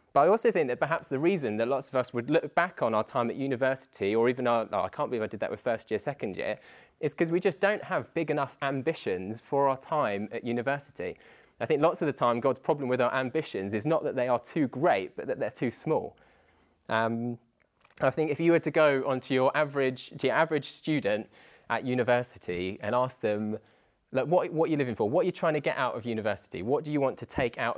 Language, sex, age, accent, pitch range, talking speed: English, male, 20-39, British, 115-150 Hz, 250 wpm